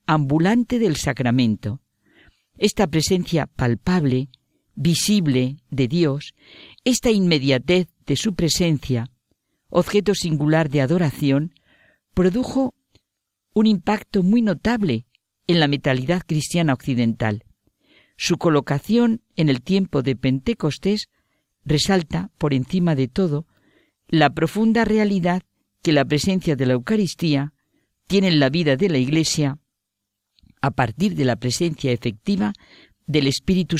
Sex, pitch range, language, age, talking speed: female, 130-185 Hz, Spanish, 50-69, 115 wpm